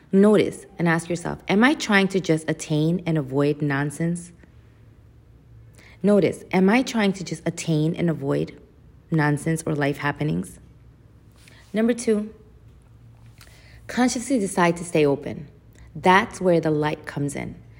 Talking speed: 130 wpm